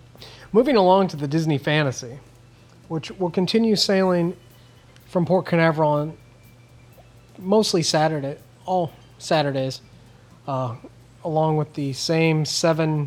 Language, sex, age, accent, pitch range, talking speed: English, male, 30-49, American, 130-180 Hz, 110 wpm